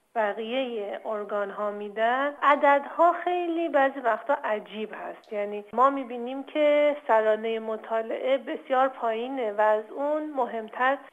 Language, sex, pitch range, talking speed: Persian, female, 215-275 Hz, 125 wpm